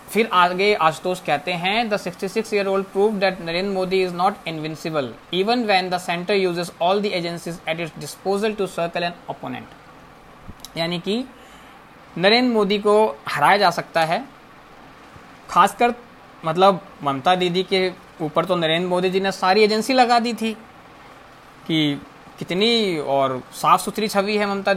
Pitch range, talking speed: 165-210 Hz, 145 wpm